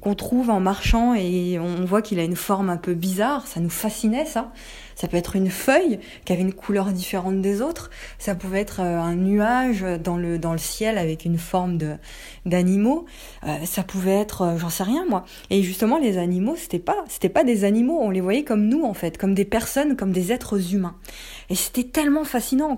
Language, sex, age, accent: French, female, 20-39, French